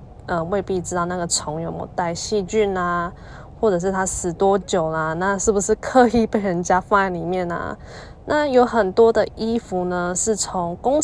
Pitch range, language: 175-215 Hz, Chinese